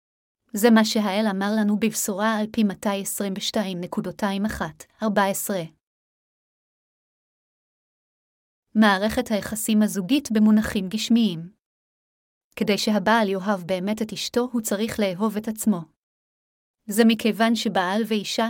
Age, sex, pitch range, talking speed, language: 30-49, female, 200-230 Hz, 95 wpm, Hebrew